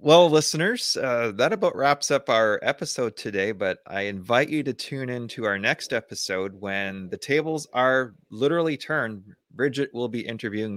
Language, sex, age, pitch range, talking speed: English, male, 30-49, 100-120 Hz, 175 wpm